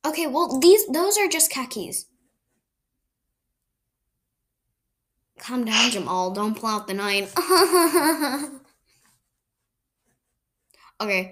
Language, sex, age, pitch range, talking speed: English, female, 10-29, 190-245 Hz, 85 wpm